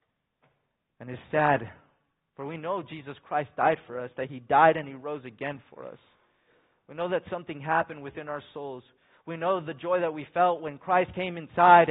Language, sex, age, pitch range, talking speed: English, male, 20-39, 145-190 Hz, 195 wpm